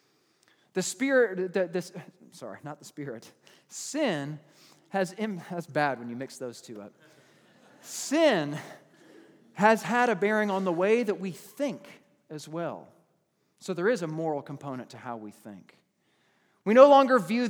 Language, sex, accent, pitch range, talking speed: English, male, American, 155-220 Hz, 150 wpm